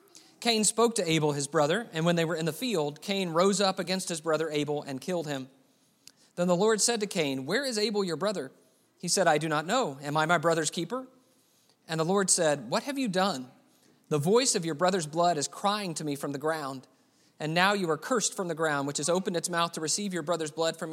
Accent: American